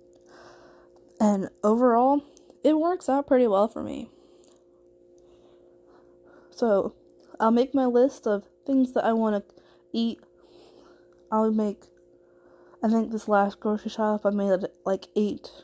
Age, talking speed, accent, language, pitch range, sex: 20-39, 125 wpm, American, English, 185-225 Hz, female